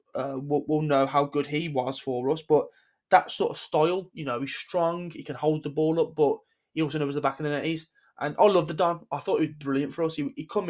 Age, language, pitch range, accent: 20-39, English, 140-165 Hz, British